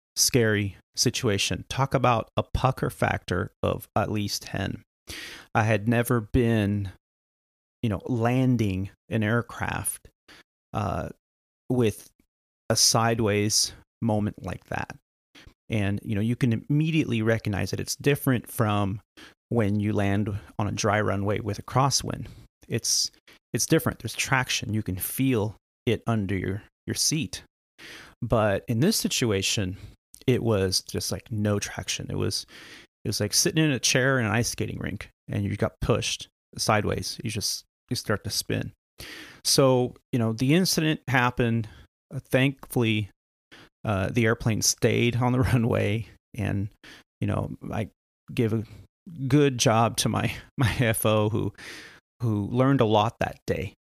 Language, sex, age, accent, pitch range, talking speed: English, male, 30-49, American, 105-125 Hz, 145 wpm